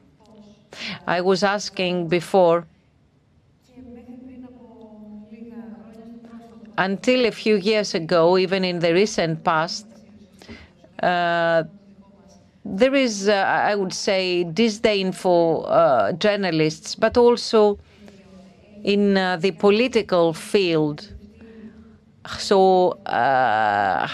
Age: 40-59